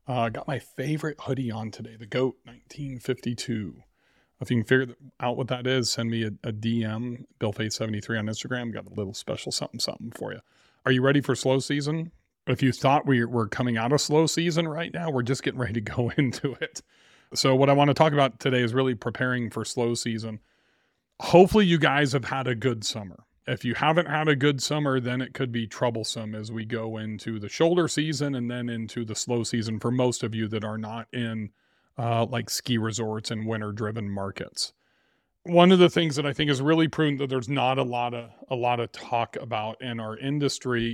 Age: 30-49